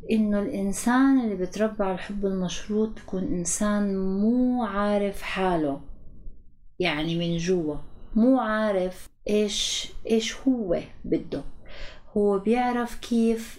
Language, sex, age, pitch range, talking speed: Arabic, female, 30-49, 170-215 Hz, 100 wpm